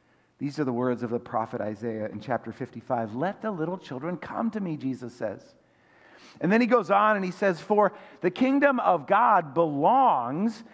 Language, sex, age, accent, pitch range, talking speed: English, male, 50-69, American, 135-195 Hz, 190 wpm